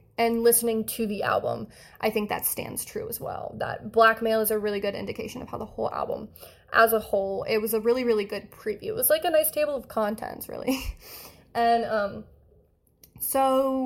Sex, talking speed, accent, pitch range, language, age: female, 200 wpm, American, 215-275 Hz, English, 20-39